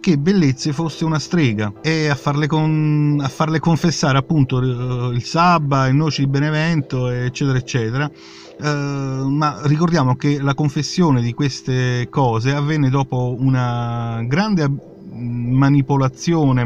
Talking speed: 120 wpm